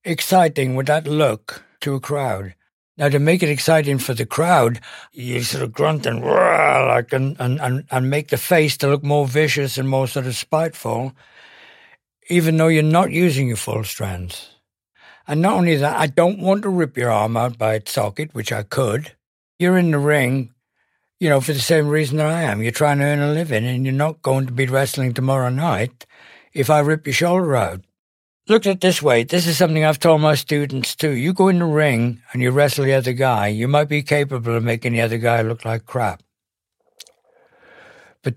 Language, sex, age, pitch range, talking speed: English, male, 60-79, 120-155 Hz, 210 wpm